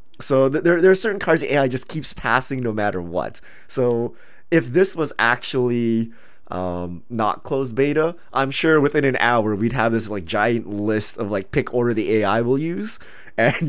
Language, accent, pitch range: English, American, 105-140 Hz